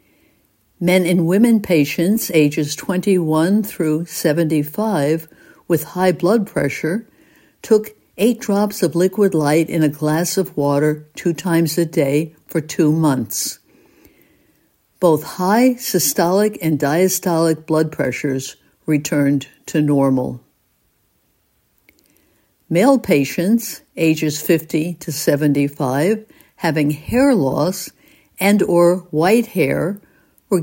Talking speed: 105 wpm